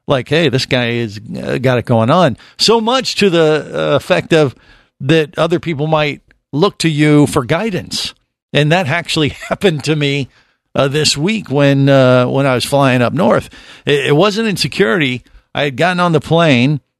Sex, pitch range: male, 110-145 Hz